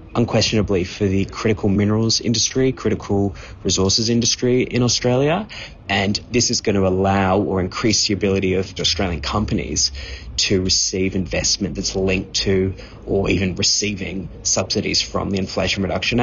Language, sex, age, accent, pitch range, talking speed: English, male, 20-39, Australian, 95-110 Hz, 140 wpm